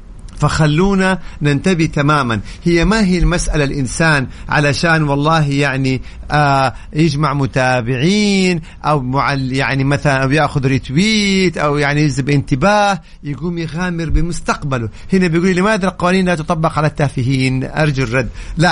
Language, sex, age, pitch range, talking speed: Arabic, male, 50-69, 140-185 Hz, 125 wpm